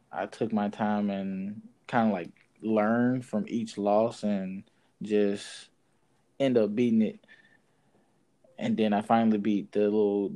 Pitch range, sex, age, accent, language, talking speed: 105-150 Hz, male, 20-39, American, English, 145 wpm